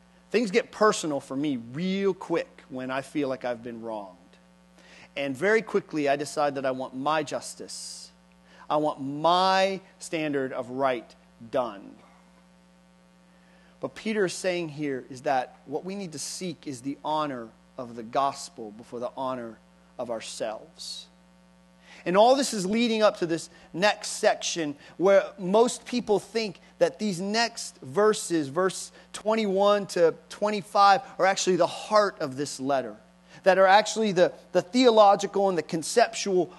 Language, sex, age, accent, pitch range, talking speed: English, male, 40-59, American, 130-200 Hz, 150 wpm